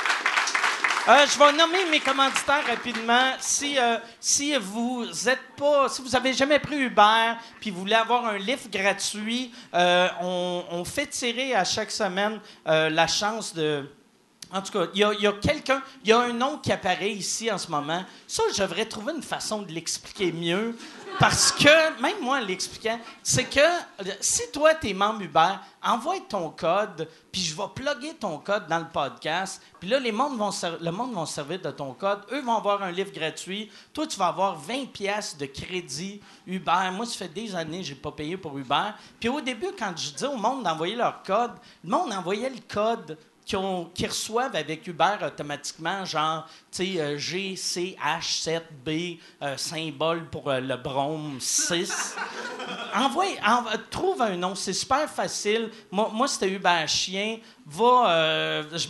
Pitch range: 170-240 Hz